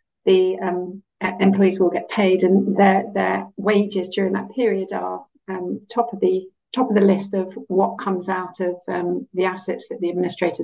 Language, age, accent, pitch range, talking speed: English, 50-69, British, 180-205 Hz, 175 wpm